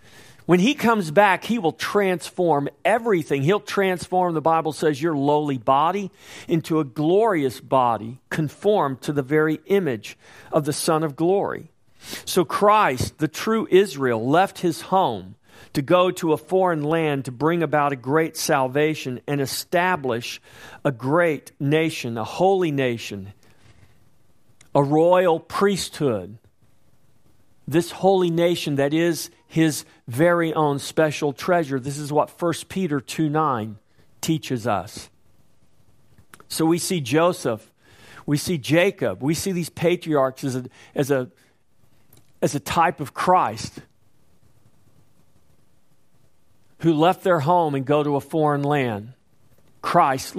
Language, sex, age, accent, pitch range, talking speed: English, male, 50-69, American, 130-170 Hz, 130 wpm